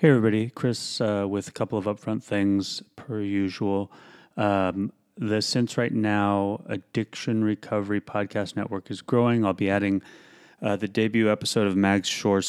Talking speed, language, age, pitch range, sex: 160 wpm, English, 30-49, 100-115 Hz, male